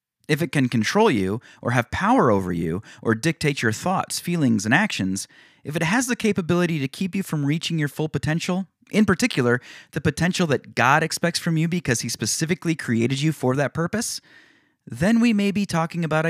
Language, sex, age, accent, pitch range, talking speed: English, male, 30-49, American, 130-185 Hz, 195 wpm